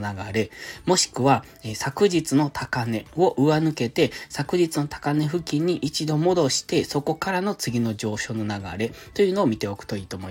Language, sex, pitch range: Japanese, male, 115-160 Hz